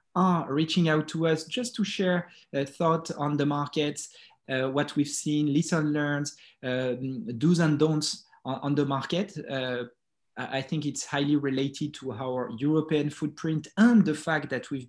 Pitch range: 140-165 Hz